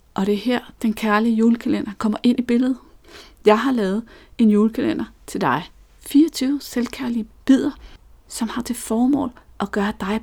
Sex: female